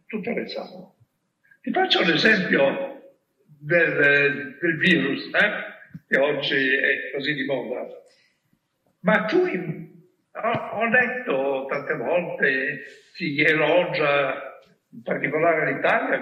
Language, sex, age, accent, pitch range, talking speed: Italian, male, 60-79, native, 165-270 Hz, 105 wpm